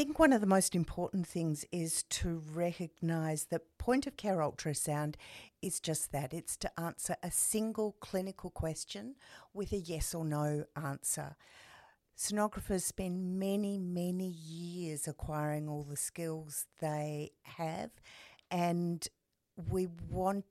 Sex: female